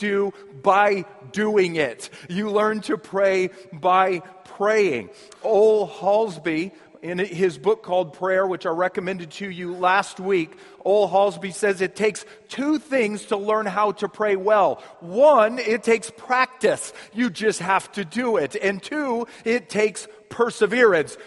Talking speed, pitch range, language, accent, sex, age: 145 wpm, 195-245 Hz, English, American, male, 40-59